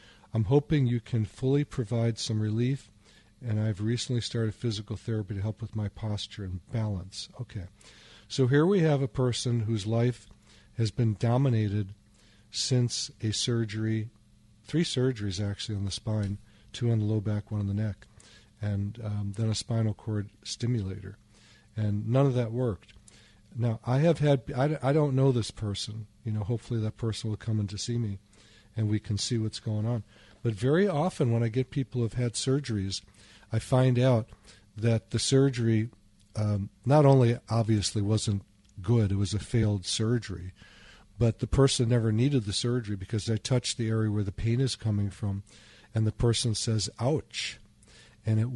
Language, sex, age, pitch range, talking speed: English, male, 40-59, 105-120 Hz, 175 wpm